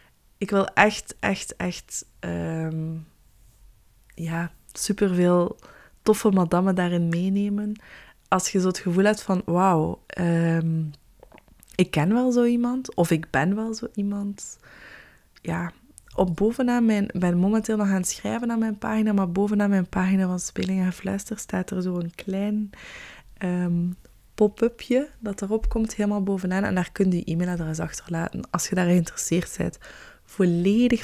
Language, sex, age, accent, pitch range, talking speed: Dutch, female, 20-39, Dutch, 165-205 Hz, 150 wpm